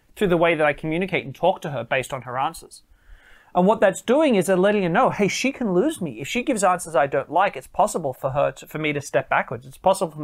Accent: Australian